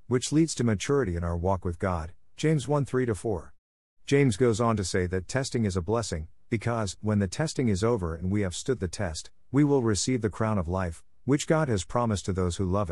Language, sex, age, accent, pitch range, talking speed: English, male, 50-69, American, 90-125 Hz, 230 wpm